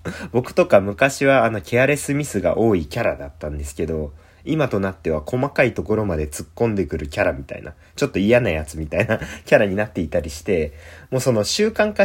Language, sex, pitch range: Japanese, male, 85-130 Hz